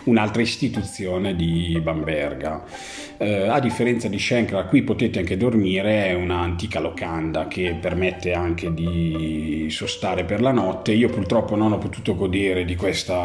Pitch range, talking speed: 90-110 Hz, 145 wpm